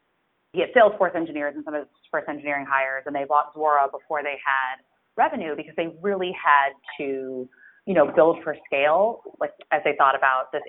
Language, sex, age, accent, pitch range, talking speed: English, female, 30-49, American, 145-180 Hz, 190 wpm